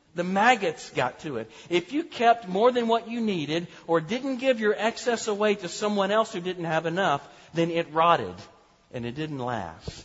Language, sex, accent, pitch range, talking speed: English, male, American, 130-170 Hz, 195 wpm